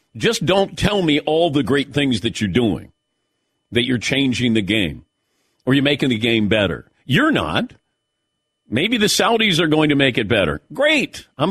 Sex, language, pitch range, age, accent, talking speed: male, English, 125-170 Hz, 50-69, American, 180 wpm